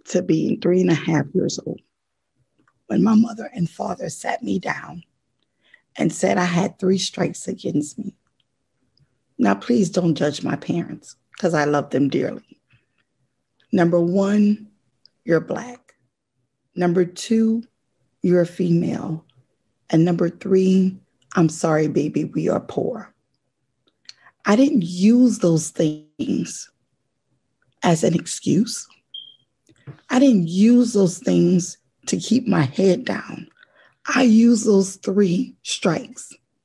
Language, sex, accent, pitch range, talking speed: English, female, American, 170-225 Hz, 125 wpm